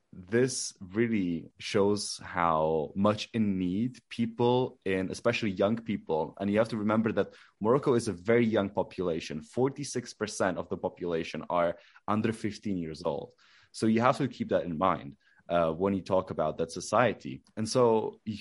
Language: English